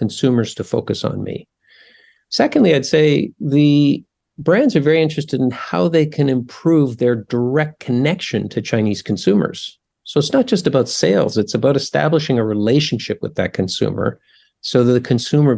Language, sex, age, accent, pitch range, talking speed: English, male, 50-69, American, 105-140 Hz, 160 wpm